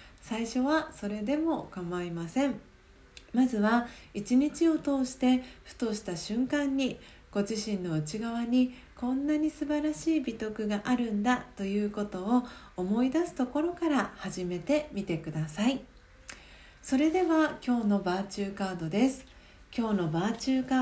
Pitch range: 190-265 Hz